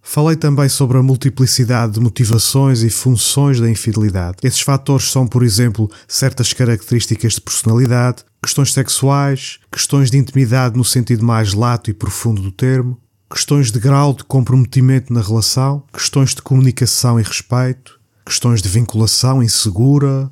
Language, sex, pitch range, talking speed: Portuguese, male, 110-135 Hz, 145 wpm